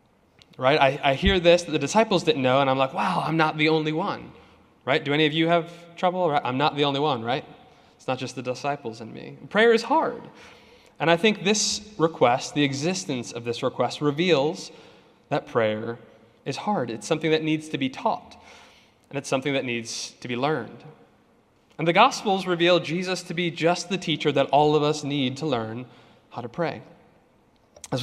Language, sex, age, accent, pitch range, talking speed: English, male, 20-39, American, 135-175 Hz, 200 wpm